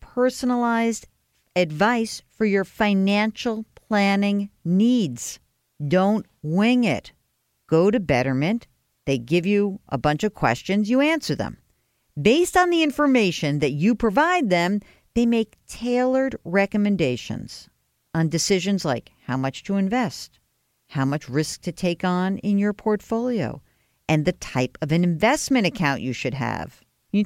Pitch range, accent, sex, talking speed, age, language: 155-225 Hz, American, female, 135 wpm, 50-69, English